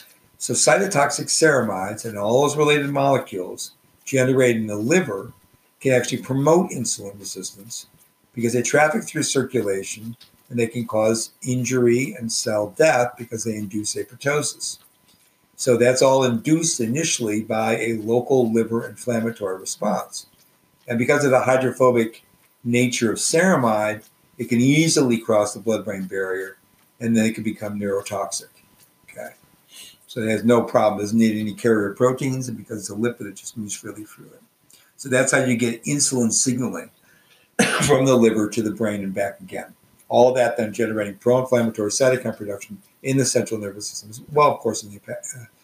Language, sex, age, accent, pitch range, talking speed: English, male, 50-69, American, 110-130 Hz, 165 wpm